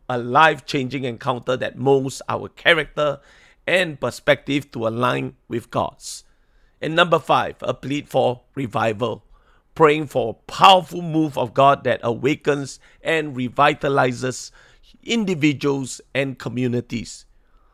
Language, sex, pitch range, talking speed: English, male, 130-160 Hz, 115 wpm